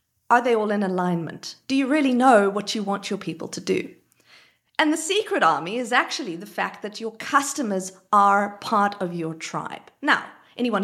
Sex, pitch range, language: female, 195-265 Hz, English